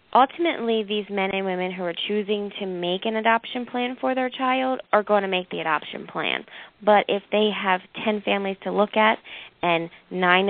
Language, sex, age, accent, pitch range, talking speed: English, female, 20-39, American, 170-195 Hz, 195 wpm